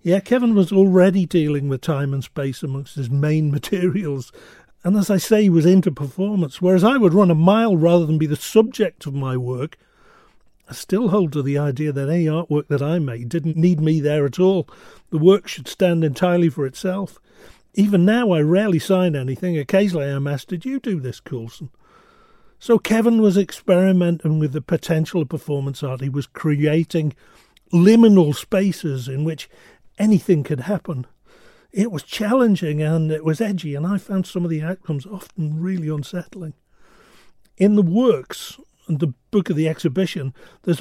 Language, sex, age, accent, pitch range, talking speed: English, male, 40-59, British, 145-190 Hz, 180 wpm